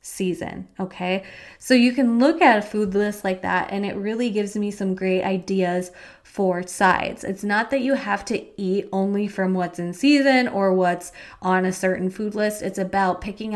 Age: 20-39